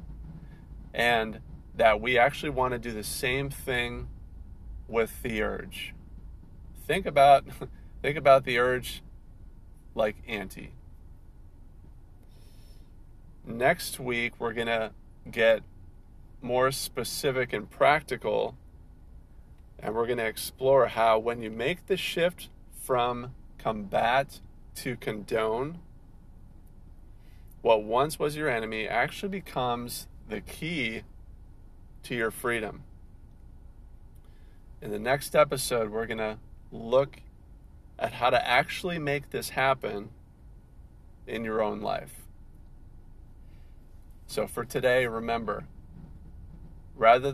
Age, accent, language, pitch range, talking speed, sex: 40-59, American, English, 90-125 Hz, 105 wpm, male